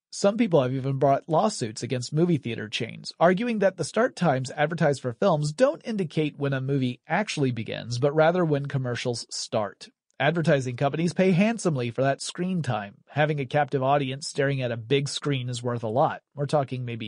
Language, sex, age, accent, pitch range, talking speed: English, male, 30-49, American, 130-175 Hz, 190 wpm